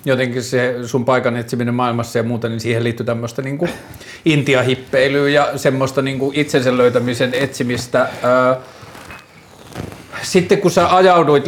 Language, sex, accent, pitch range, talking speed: Finnish, male, native, 120-135 Hz, 125 wpm